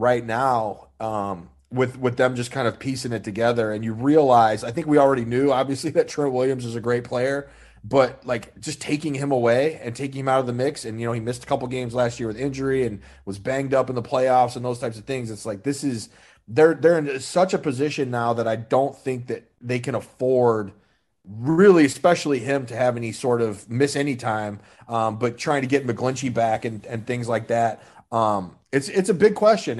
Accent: American